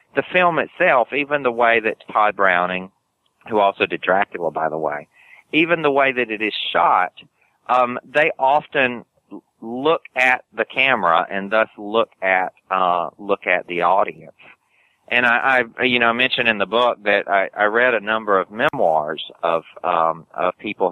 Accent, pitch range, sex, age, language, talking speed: American, 90-120 Hz, male, 40-59, English, 175 wpm